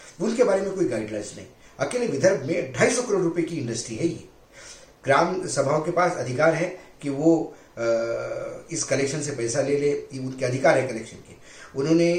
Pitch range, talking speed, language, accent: 130-170 Hz, 180 wpm, Hindi, native